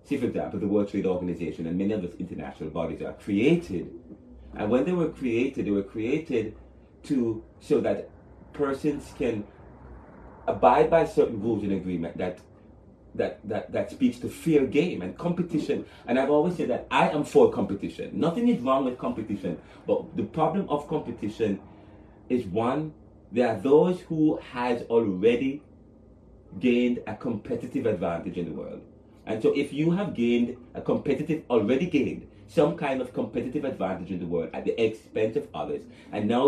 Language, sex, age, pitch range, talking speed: English, male, 30-49, 105-150 Hz, 170 wpm